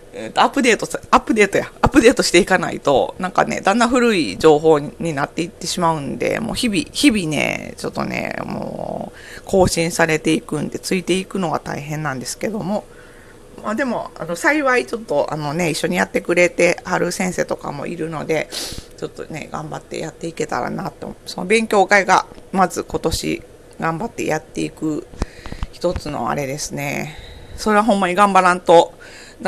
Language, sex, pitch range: Japanese, female, 165-225 Hz